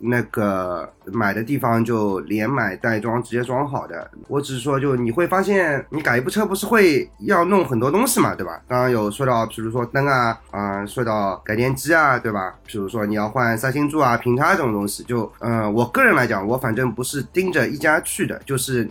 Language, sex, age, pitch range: Chinese, male, 20-39, 110-140 Hz